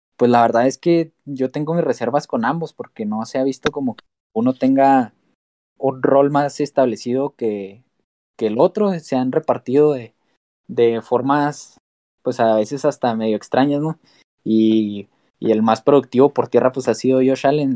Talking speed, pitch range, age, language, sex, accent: 180 wpm, 115-140 Hz, 20-39, Spanish, male, Mexican